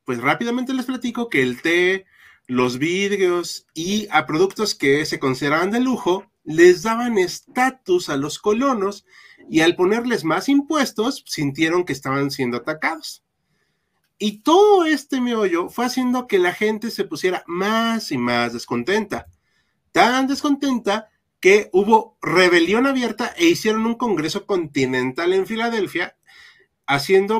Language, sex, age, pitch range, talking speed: Spanish, male, 30-49, 155-240 Hz, 135 wpm